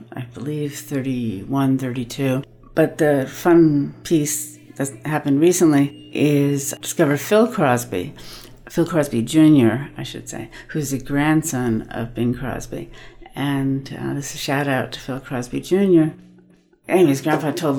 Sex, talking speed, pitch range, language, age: female, 140 wpm, 120-145 Hz, English, 60-79